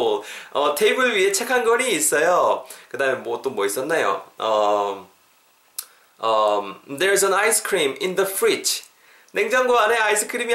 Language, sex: Korean, male